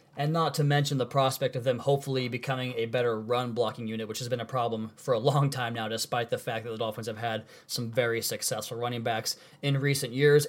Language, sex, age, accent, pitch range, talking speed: English, male, 20-39, American, 120-145 Hz, 230 wpm